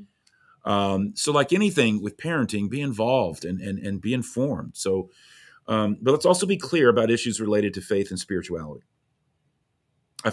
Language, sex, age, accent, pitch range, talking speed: English, male, 40-59, American, 95-125 Hz, 165 wpm